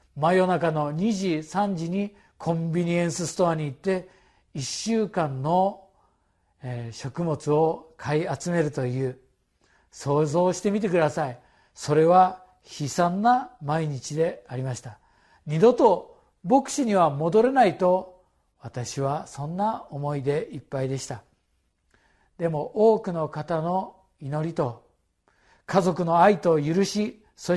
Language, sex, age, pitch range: Japanese, male, 50-69, 145-200 Hz